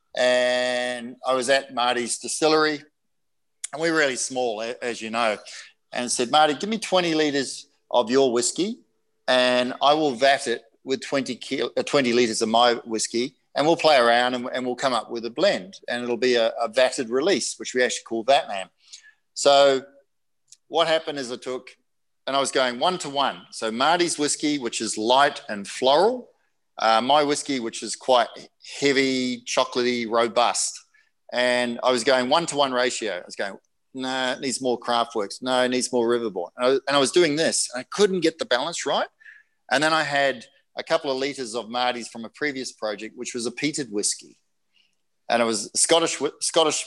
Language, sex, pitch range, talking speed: English, male, 120-145 Hz, 195 wpm